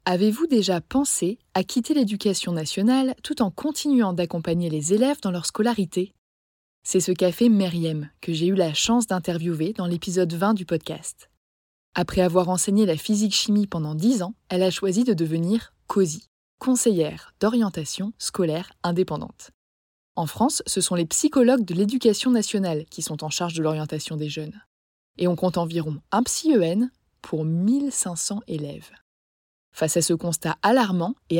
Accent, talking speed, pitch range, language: French, 155 wpm, 165-230 Hz, French